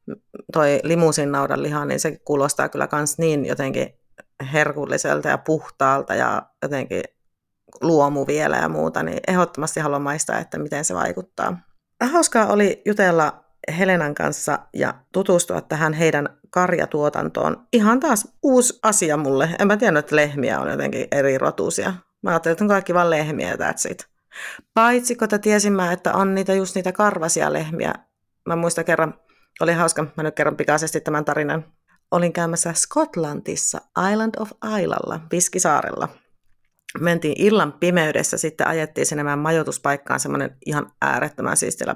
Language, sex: Finnish, female